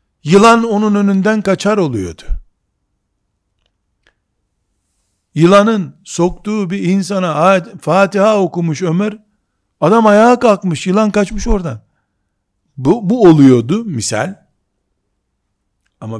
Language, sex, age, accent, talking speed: Turkish, male, 60-79, native, 90 wpm